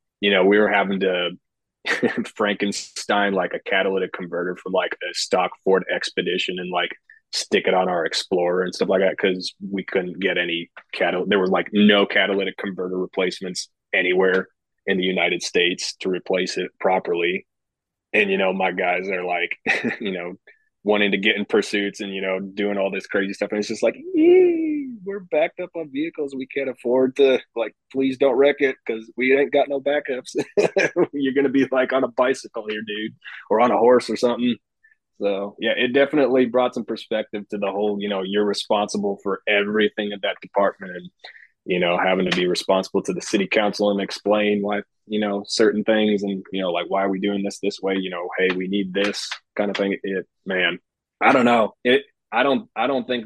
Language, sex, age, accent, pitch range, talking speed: English, male, 30-49, American, 95-115 Hz, 205 wpm